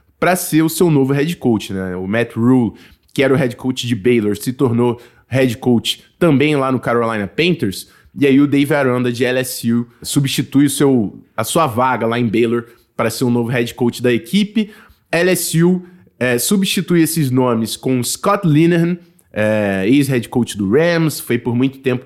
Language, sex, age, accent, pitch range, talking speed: Portuguese, male, 20-39, Brazilian, 120-150 Hz, 190 wpm